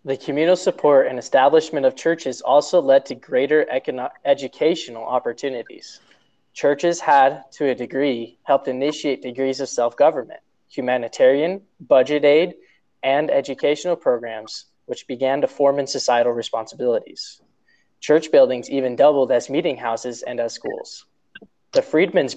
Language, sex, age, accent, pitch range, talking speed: English, male, 20-39, American, 125-165 Hz, 130 wpm